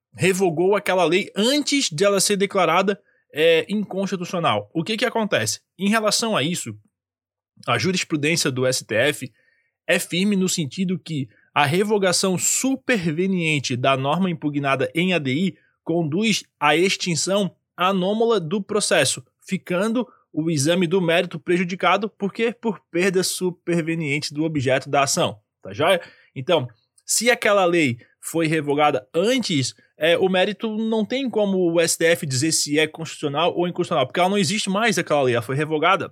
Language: Portuguese